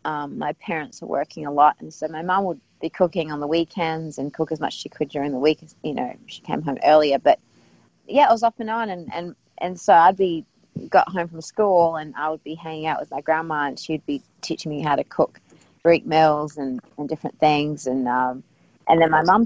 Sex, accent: female, Australian